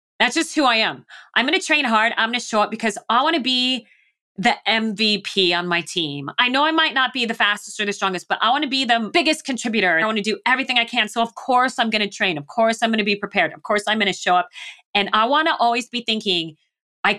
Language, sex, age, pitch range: English, female, 30-49, 190-245 Hz